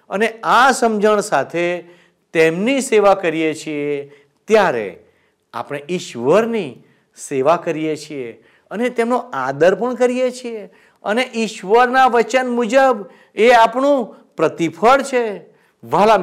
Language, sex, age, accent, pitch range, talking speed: Gujarati, male, 50-69, native, 170-250 Hz, 105 wpm